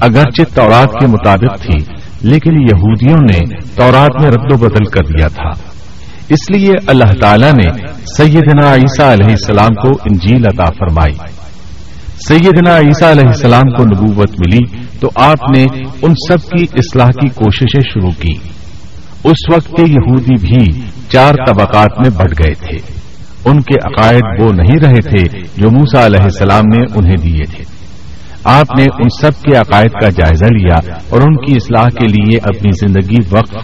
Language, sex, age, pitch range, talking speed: Urdu, male, 50-69, 95-135 Hz, 160 wpm